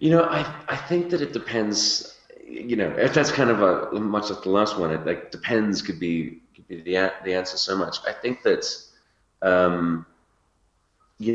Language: English